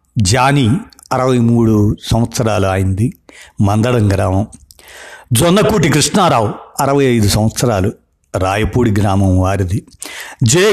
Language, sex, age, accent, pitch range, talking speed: Telugu, male, 60-79, native, 100-130 Hz, 90 wpm